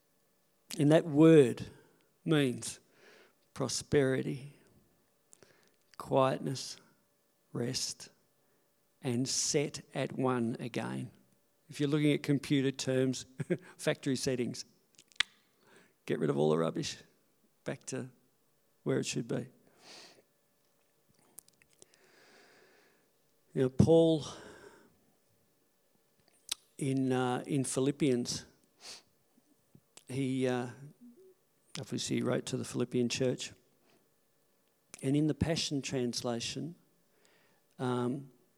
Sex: male